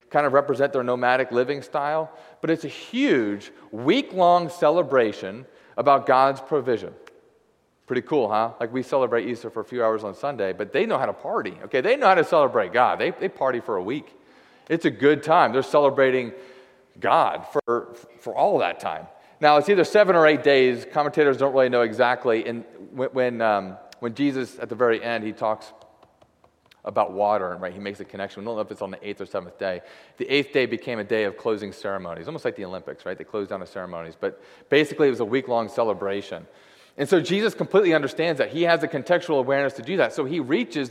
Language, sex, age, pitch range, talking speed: English, male, 30-49, 115-155 Hz, 215 wpm